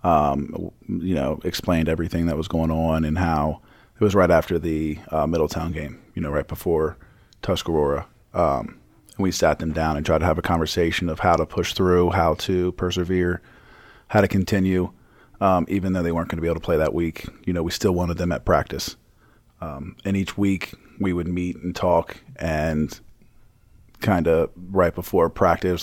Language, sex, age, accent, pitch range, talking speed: English, male, 40-59, American, 80-95 Hz, 195 wpm